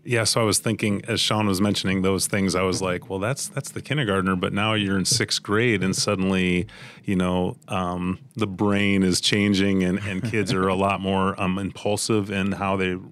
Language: English